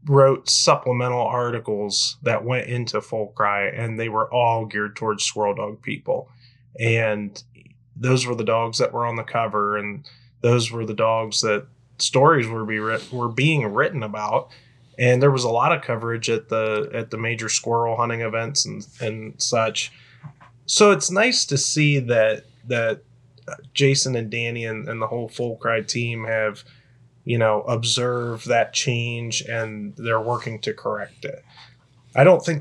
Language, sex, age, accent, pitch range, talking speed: English, male, 20-39, American, 115-130 Hz, 165 wpm